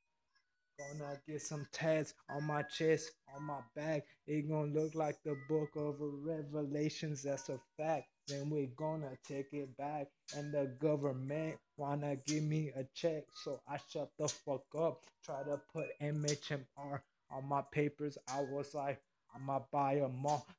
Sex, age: male, 20-39